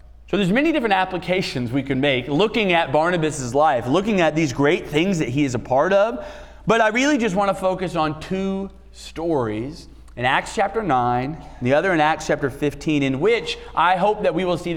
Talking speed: 210 wpm